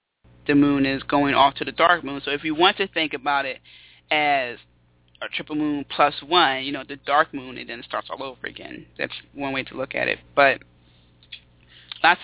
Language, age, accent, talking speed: English, 20-39, American, 210 wpm